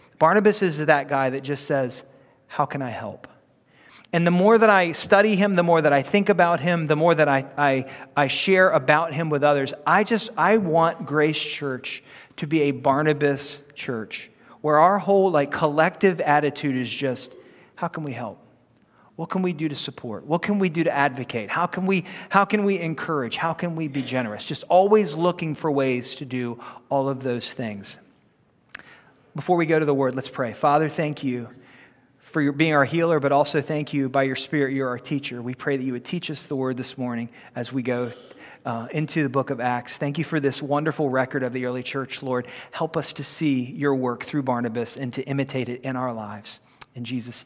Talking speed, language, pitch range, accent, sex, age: 210 wpm, English, 130-165 Hz, American, male, 40-59